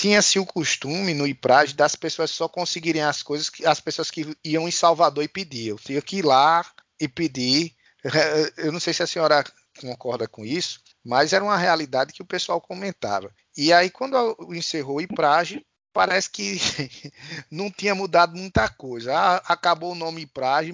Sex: male